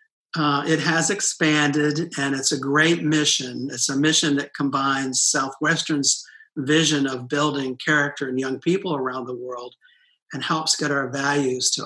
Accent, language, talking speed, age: American, English, 155 wpm, 50-69